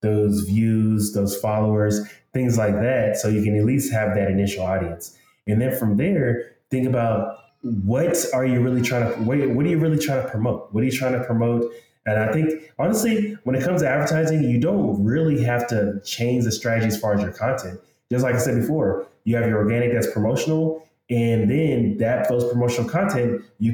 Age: 20-39